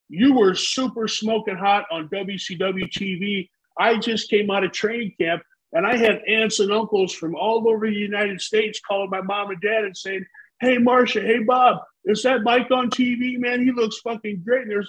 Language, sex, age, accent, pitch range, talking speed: English, male, 50-69, American, 215-260 Hz, 200 wpm